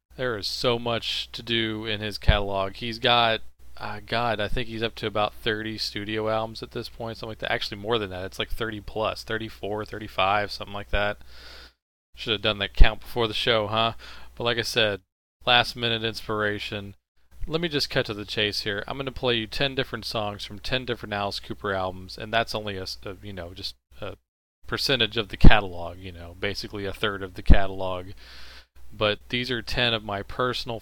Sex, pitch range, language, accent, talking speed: male, 100-120 Hz, English, American, 210 wpm